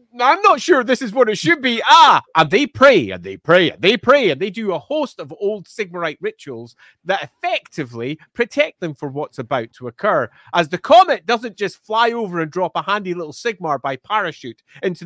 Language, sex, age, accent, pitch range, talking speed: English, male, 30-49, British, 170-260 Hz, 210 wpm